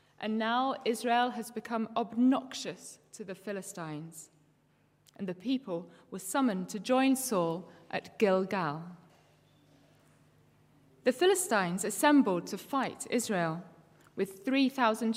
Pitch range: 175-240 Hz